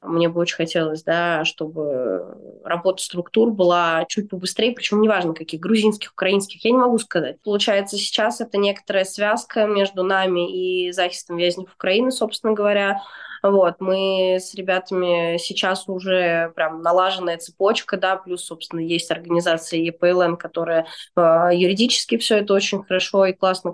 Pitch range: 170-200 Hz